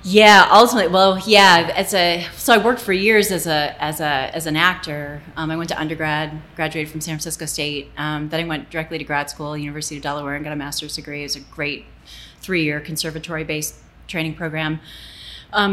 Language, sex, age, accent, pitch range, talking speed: English, female, 30-49, American, 155-180 Hz, 200 wpm